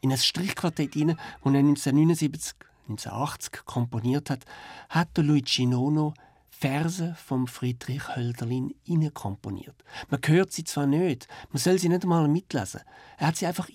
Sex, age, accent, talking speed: male, 50-69, German, 150 wpm